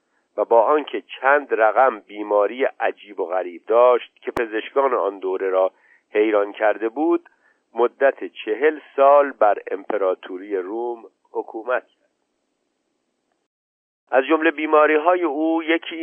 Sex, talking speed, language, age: male, 115 wpm, Persian, 50-69